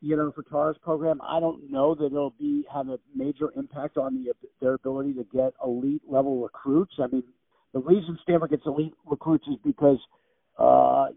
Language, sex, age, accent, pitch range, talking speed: English, male, 50-69, American, 125-150 Hz, 190 wpm